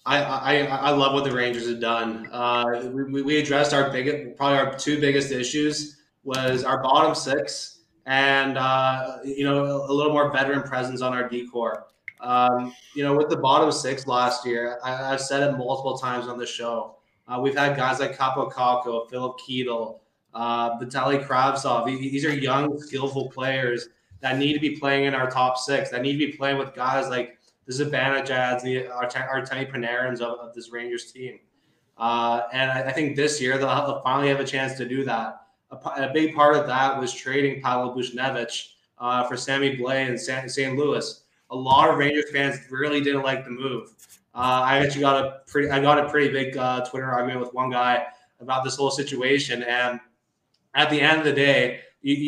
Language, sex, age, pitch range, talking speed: English, male, 20-39, 125-140 Hz, 195 wpm